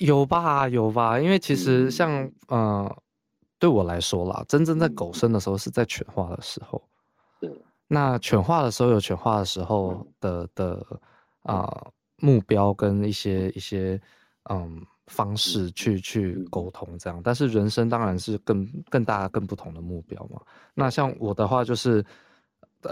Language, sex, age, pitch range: Chinese, male, 20-39, 95-120 Hz